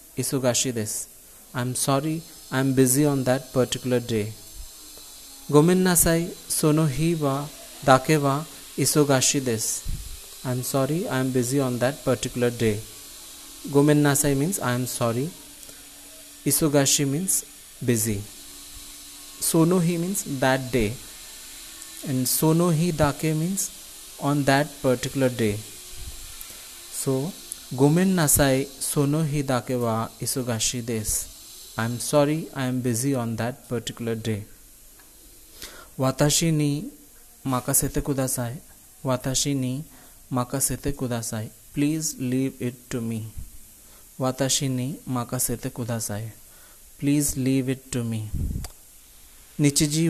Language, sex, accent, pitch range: Japanese, male, Indian, 120-145 Hz